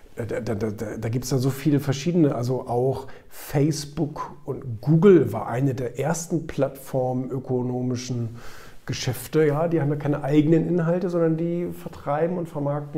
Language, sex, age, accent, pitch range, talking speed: German, male, 50-69, German, 110-150 Hz, 150 wpm